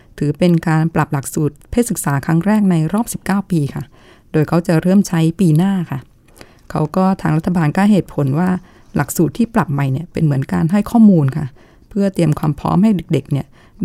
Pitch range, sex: 155-190 Hz, female